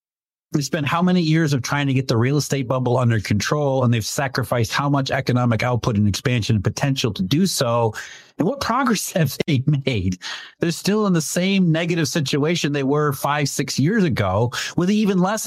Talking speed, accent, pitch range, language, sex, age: 195 wpm, American, 110-150 Hz, English, male, 30-49